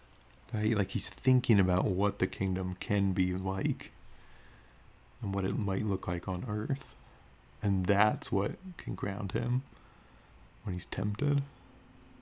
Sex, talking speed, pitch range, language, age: male, 135 wpm, 95-115 Hz, English, 30-49